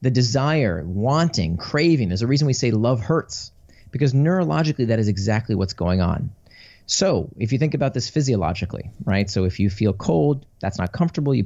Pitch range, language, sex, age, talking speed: 90-135 Hz, English, male, 30-49, 190 wpm